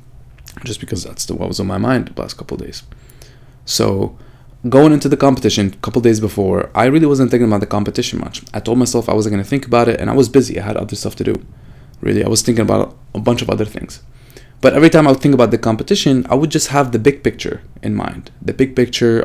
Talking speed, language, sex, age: 250 wpm, English, male, 20-39